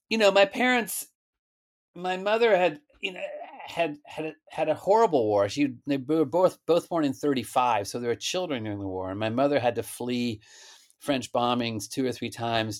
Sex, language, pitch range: male, English, 105-145 Hz